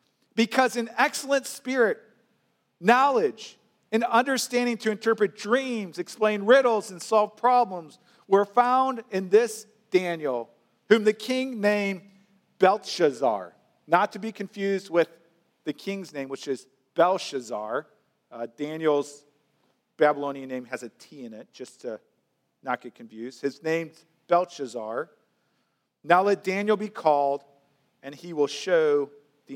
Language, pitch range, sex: English, 155-215 Hz, male